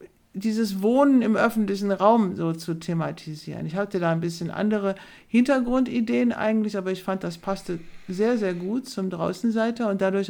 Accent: German